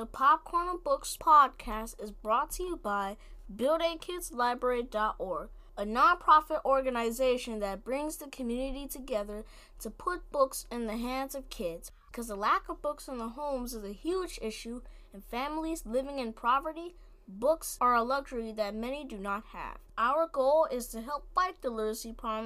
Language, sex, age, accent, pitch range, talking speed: English, female, 20-39, American, 215-285 Hz, 165 wpm